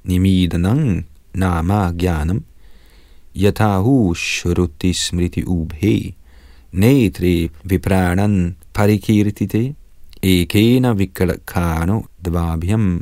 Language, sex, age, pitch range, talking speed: Danish, male, 40-59, 85-105 Hz, 75 wpm